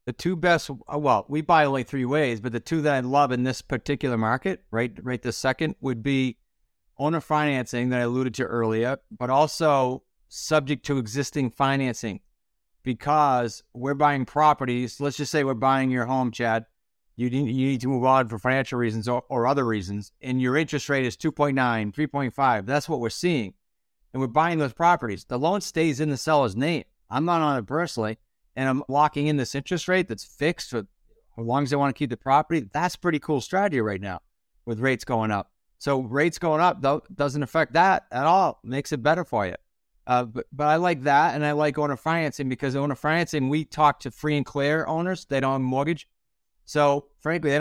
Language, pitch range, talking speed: English, 120-150 Hz, 210 wpm